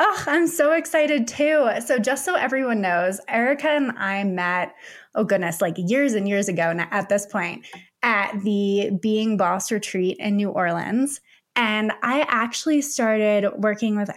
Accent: American